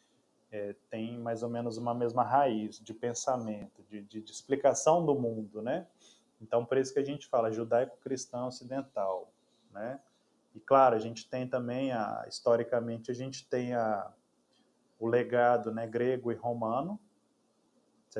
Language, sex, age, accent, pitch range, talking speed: Portuguese, male, 20-39, Brazilian, 110-130 Hz, 140 wpm